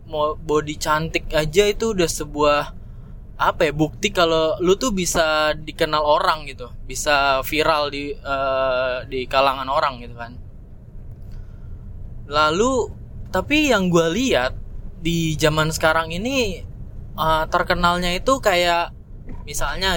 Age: 20-39